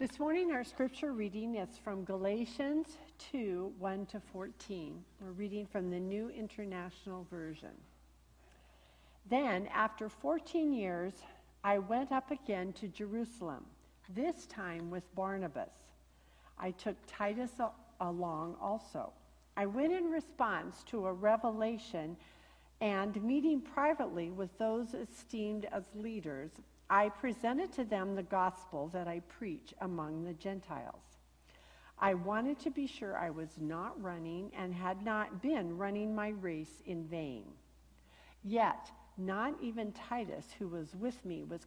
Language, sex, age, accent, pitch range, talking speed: English, female, 60-79, American, 175-225 Hz, 130 wpm